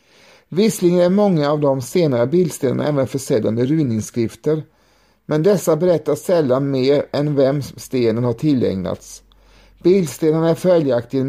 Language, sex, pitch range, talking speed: Swedish, male, 130-175 Hz, 130 wpm